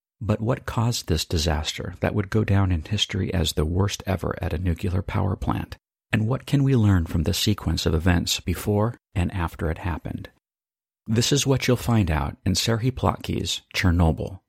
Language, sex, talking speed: English, male, 185 wpm